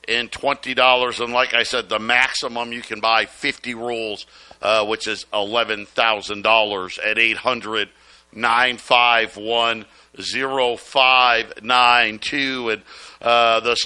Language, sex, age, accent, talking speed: English, male, 50-69, American, 145 wpm